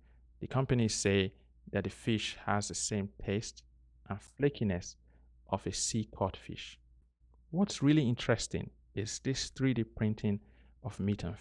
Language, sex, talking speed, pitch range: English, male, 135 wpm, 90-110 Hz